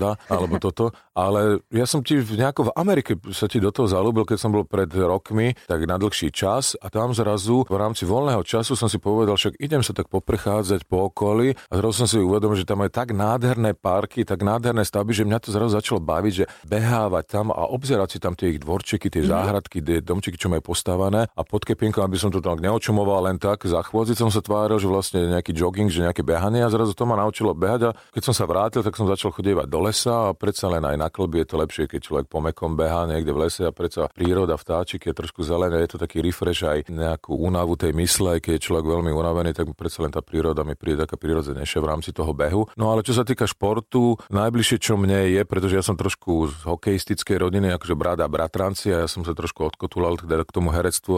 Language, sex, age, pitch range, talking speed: Slovak, male, 40-59, 85-110 Hz, 225 wpm